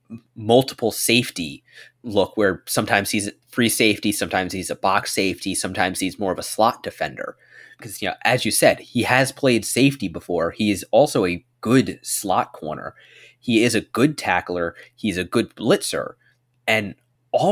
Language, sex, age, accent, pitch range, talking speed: English, male, 20-39, American, 105-135 Hz, 170 wpm